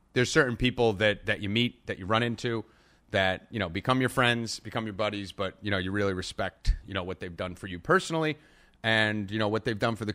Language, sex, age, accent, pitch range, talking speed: English, male, 30-49, American, 90-115 Hz, 250 wpm